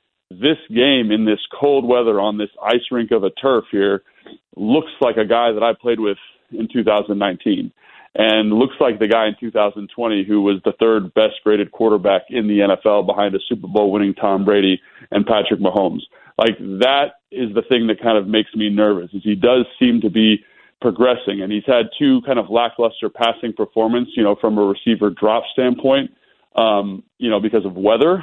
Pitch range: 105-120 Hz